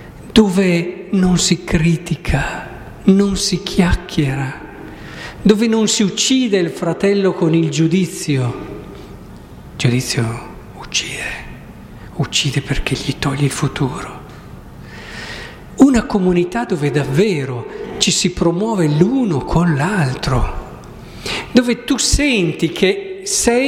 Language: Italian